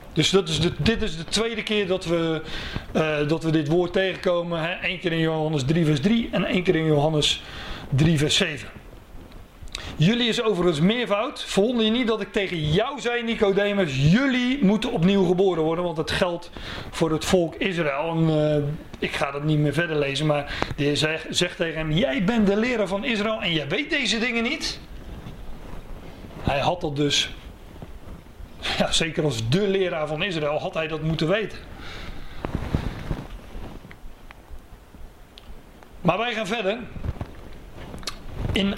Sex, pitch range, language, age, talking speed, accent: male, 150-205 Hz, Dutch, 40-59, 165 wpm, Dutch